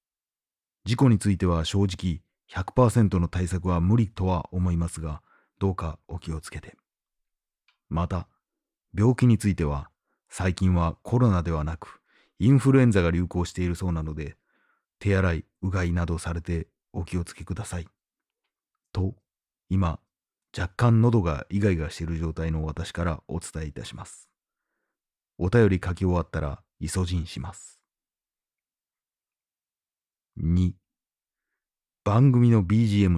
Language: Japanese